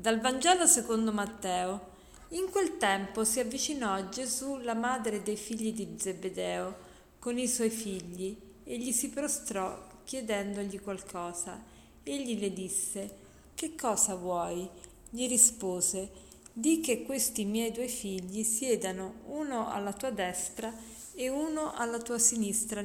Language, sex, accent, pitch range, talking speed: Italian, female, native, 195-240 Hz, 135 wpm